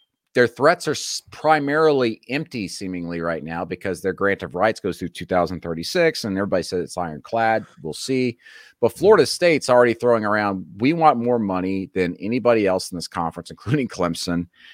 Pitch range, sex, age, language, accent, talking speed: 90-125 Hz, male, 30-49, English, American, 165 wpm